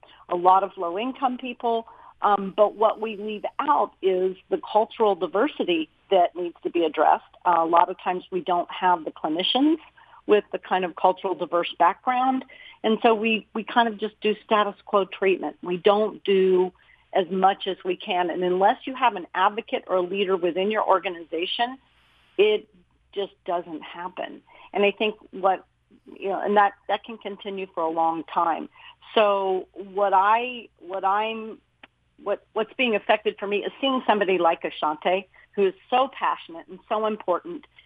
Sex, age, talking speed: female, 50-69, 170 wpm